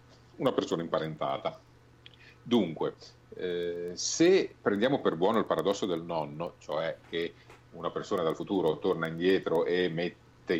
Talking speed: 130 wpm